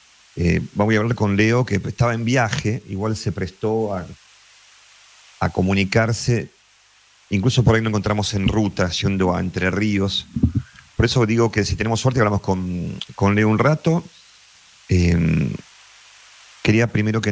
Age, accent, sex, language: 40-59, Argentinian, male, Spanish